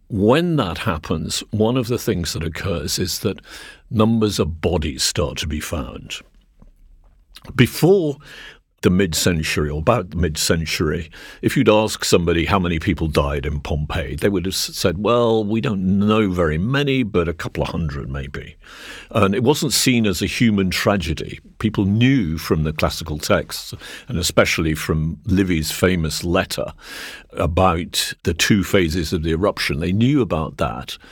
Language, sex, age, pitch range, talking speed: English, male, 50-69, 80-105 Hz, 160 wpm